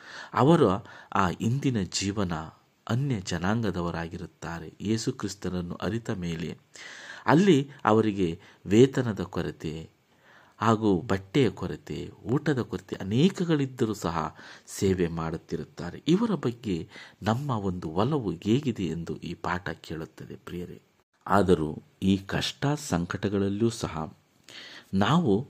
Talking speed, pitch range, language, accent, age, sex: 90 wpm, 85-110 Hz, Kannada, native, 50-69, male